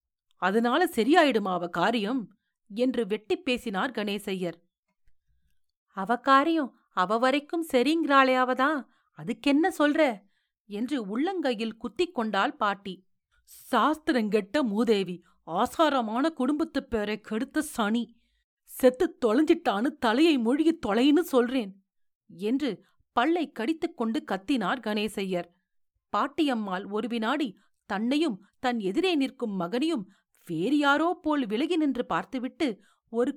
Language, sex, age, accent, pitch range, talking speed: Tamil, female, 40-59, native, 210-285 Hz, 90 wpm